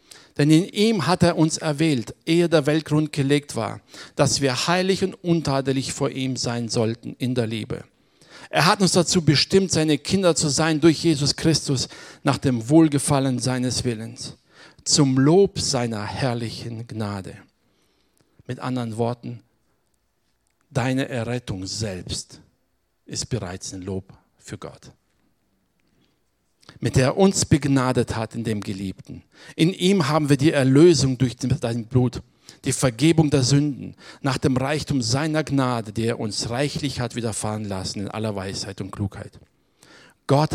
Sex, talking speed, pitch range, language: male, 145 wpm, 115-155 Hz, German